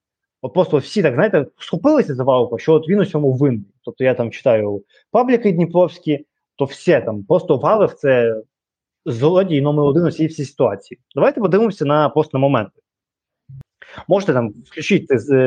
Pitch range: 125-185 Hz